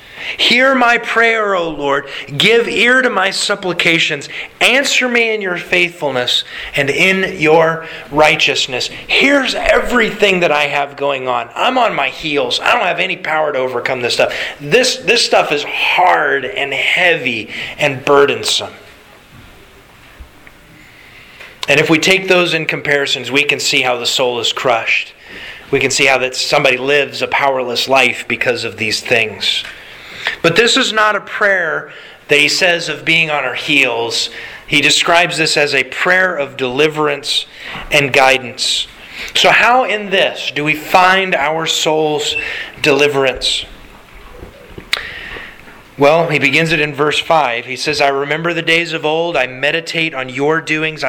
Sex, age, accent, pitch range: male, 30-49, American, 140-180 Hz